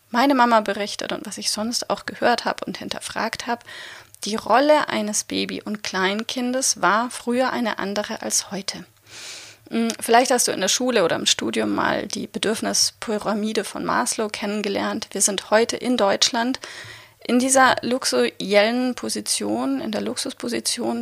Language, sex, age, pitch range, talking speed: German, female, 30-49, 205-255 Hz, 150 wpm